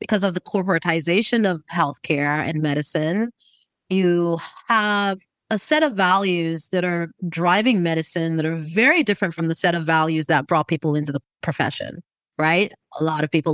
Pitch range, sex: 165-210 Hz, female